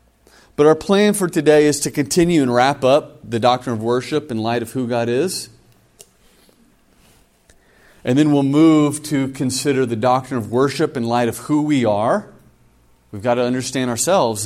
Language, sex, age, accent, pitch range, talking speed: English, male, 30-49, American, 90-145 Hz, 175 wpm